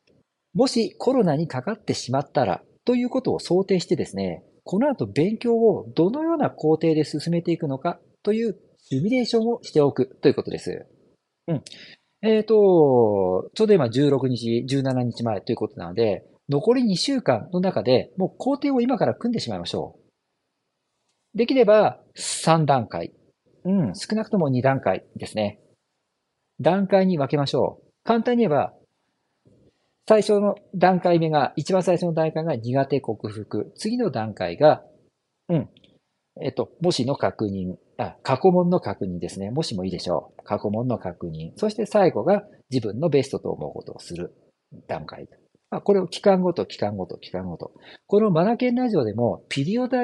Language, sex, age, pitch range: Japanese, male, 40-59, 125-210 Hz